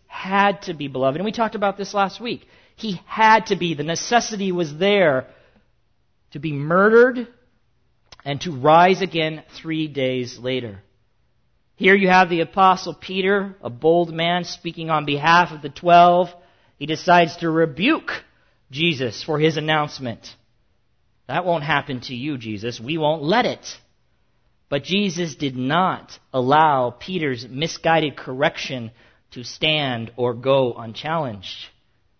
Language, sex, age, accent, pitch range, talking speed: English, male, 40-59, American, 130-190 Hz, 140 wpm